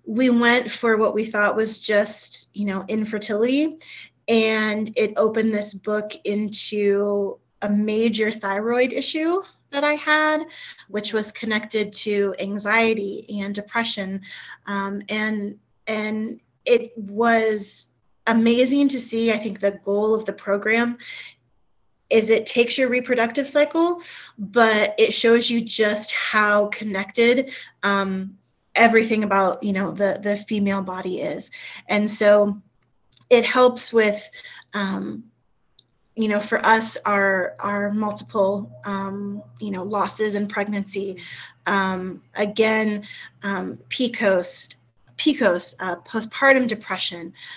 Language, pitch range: English, 200-230 Hz